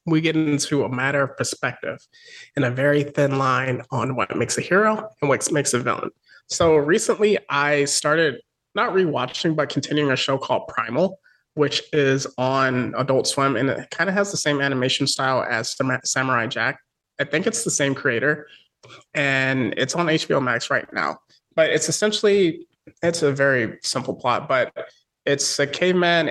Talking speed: 175 wpm